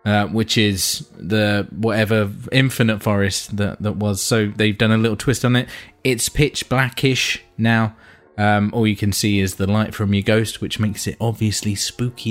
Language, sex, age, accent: English, male, 20-39, British